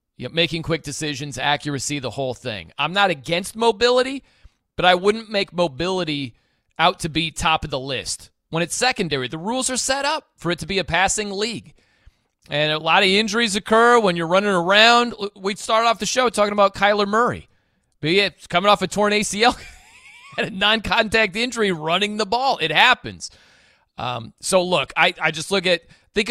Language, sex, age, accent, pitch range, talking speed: English, male, 30-49, American, 150-205 Hz, 185 wpm